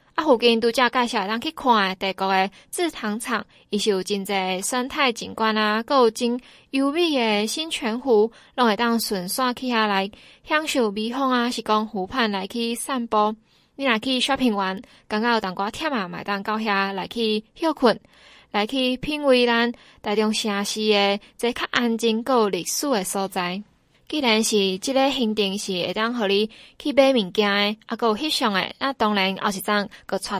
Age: 20-39